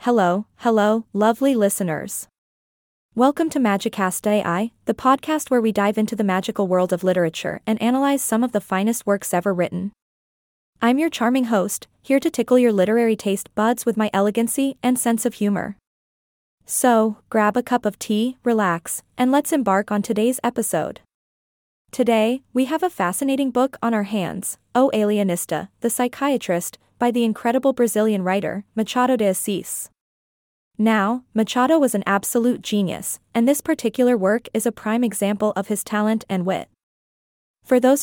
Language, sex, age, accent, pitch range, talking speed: English, female, 20-39, American, 200-245 Hz, 160 wpm